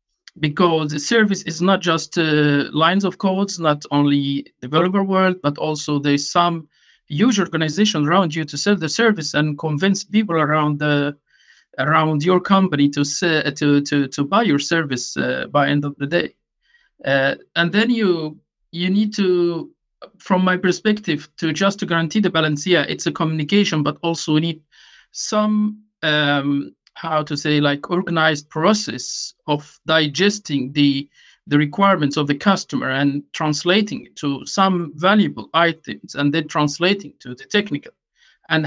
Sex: male